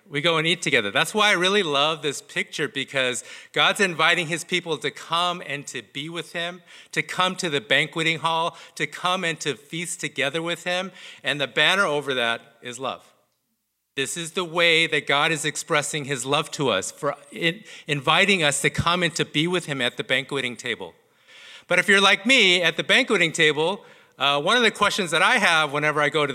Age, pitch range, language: 40-59, 140-175 Hz, English